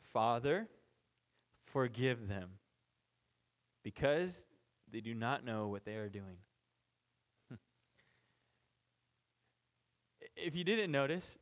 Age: 20-39